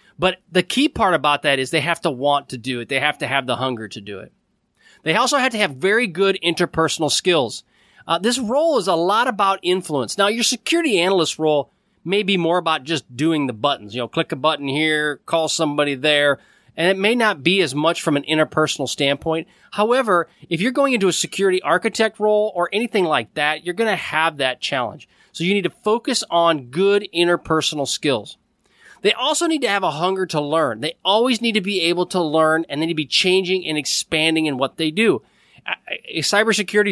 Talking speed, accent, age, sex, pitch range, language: 215 wpm, American, 30-49, male, 150-205 Hz, English